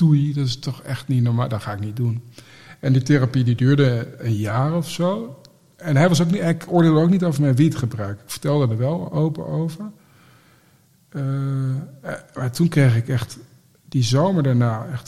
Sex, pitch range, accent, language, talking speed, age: male, 125-150 Hz, Dutch, Dutch, 190 wpm, 50-69